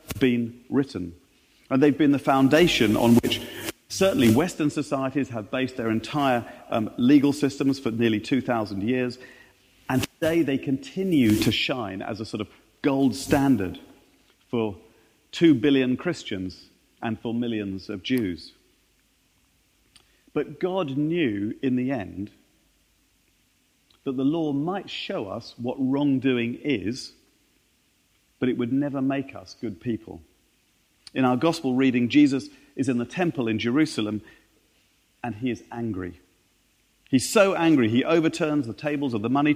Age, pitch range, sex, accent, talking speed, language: 40-59, 115-150 Hz, male, British, 140 wpm, English